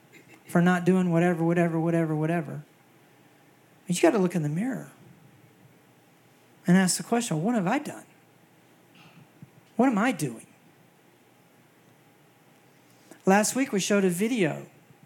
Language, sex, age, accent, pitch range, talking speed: English, male, 40-59, American, 160-190 Hz, 130 wpm